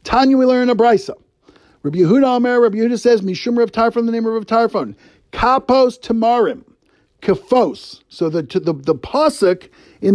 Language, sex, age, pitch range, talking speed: English, male, 50-69, 175-235 Hz, 155 wpm